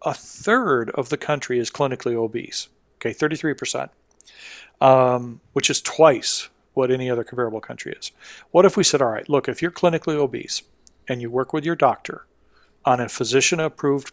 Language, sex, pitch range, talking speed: English, male, 125-150 Hz, 175 wpm